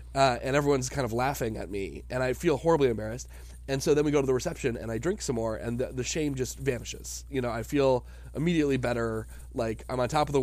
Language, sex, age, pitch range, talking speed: English, male, 20-39, 100-125 Hz, 255 wpm